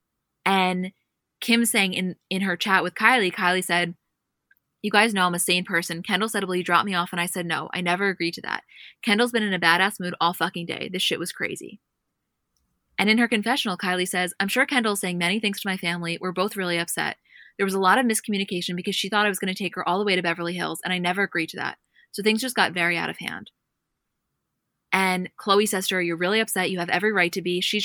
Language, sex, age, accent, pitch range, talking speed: English, female, 20-39, American, 175-205 Hz, 250 wpm